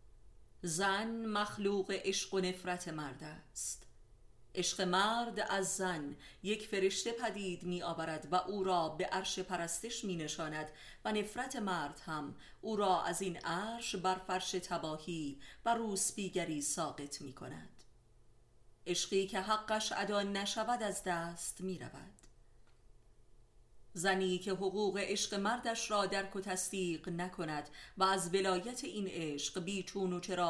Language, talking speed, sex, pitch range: Persian, 135 wpm, female, 165-200 Hz